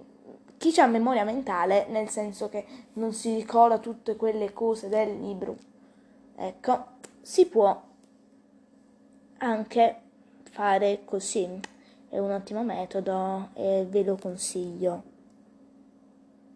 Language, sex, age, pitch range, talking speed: Italian, female, 20-39, 210-255 Hz, 105 wpm